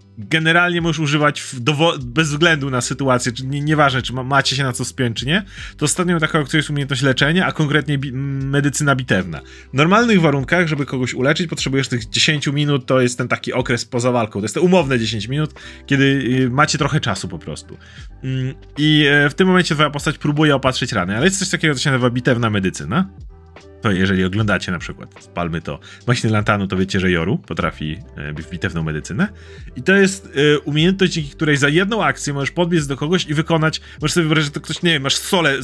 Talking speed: 205 wpm